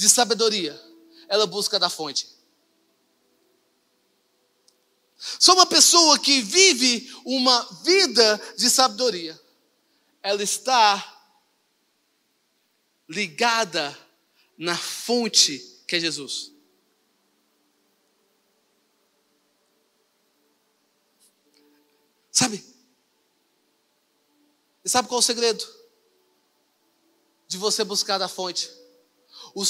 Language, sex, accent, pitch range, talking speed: Portuguese, male, Brazilian, 175-270 Hz, 75 wpm